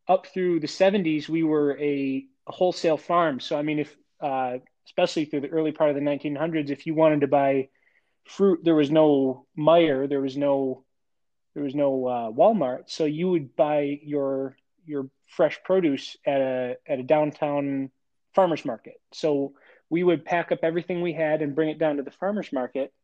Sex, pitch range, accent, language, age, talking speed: male, 140-160 Hz, American, English, 20-39, 190 wpm